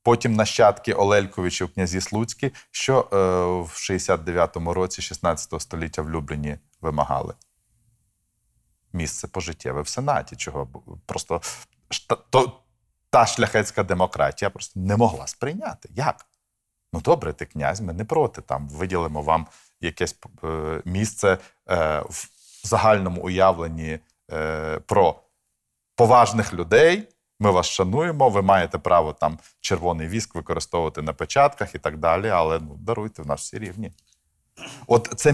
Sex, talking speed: male, 125 wpm